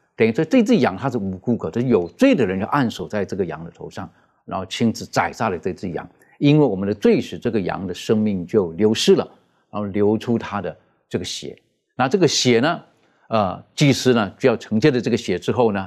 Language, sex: Chinese, male